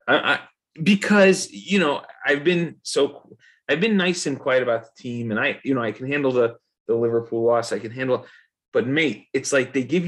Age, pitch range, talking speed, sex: 30-49, 125-170 Hz, 220 wpm, male